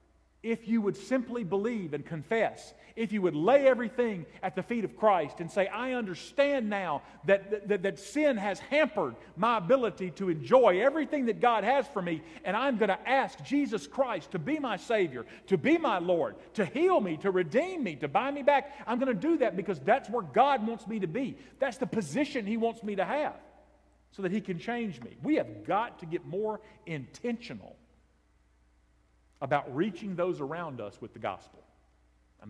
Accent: American